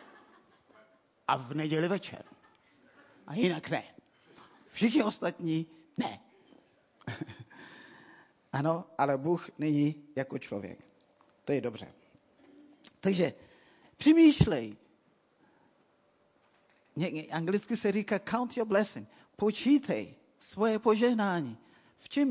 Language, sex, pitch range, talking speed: Czech, male, 150-235 Hz, 85 wpm